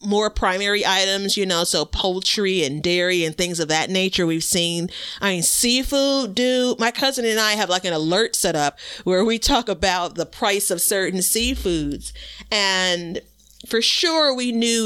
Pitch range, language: 165-200 Hz, English